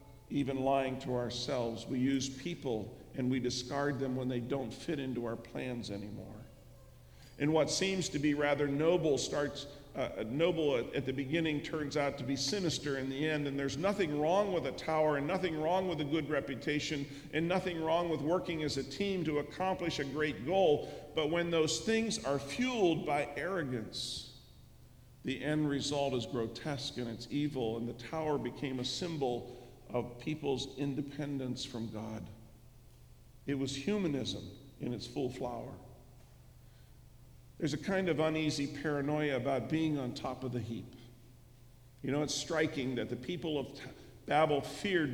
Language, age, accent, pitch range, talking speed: English, 50-69, American, 125-155 Hz, 165 wpm